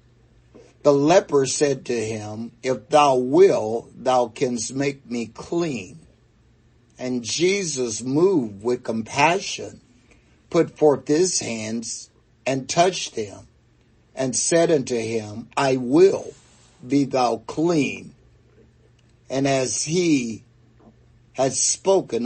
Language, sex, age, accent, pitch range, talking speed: English, male, 60-79, American, 120-145 Hz, 105 wpm